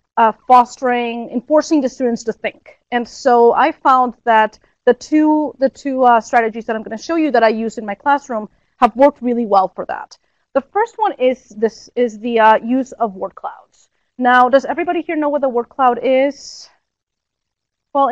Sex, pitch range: female, 225-275 Hz